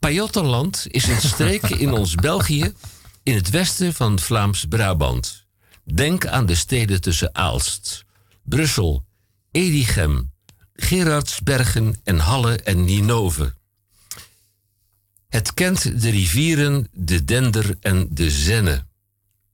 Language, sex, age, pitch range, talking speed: Dutch, male, 60-79, 95-115 Hz, 105 wpm